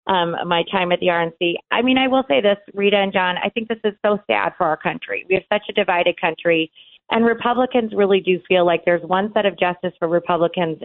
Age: 30-49